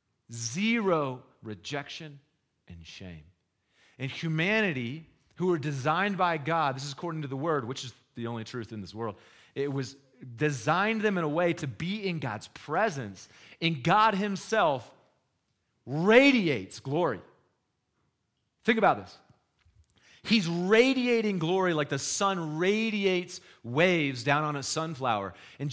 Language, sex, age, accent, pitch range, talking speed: English, male, 30-49, American, 135-200 Hz, 135 wpm